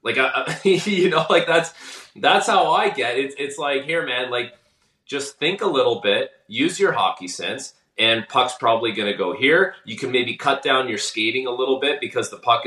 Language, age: English, 30-49